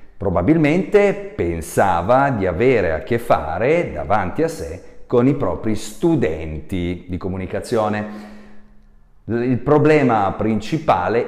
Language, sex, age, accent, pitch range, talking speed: Italian, male, 40-59, native, 80-125 Hz, 100 wpm